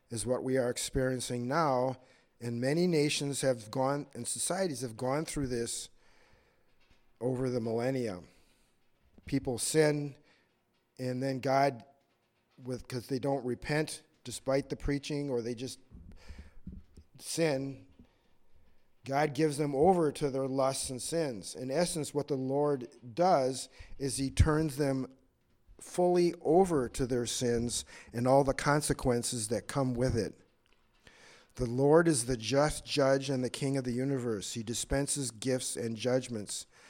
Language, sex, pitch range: English, male, 120-140 Hz